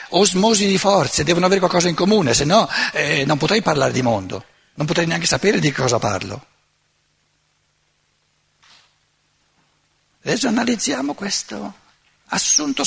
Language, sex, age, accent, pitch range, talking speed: Italian, male, 60-79, native, 125-205 Hz, 125 wpm